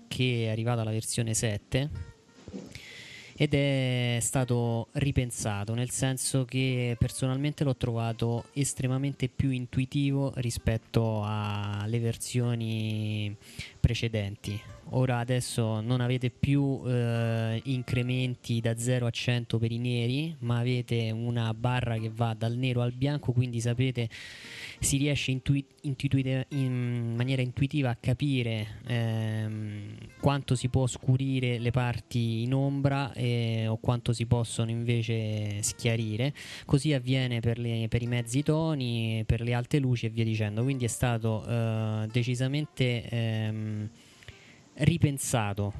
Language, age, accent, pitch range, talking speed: Italian, 20-39, native, 115-130 Hz, 120 wpm